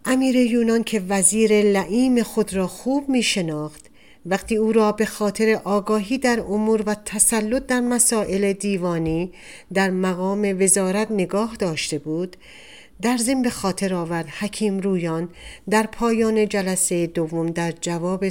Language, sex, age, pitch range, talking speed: Persian, female, 50-69, 170-220 Hz, 140 wpm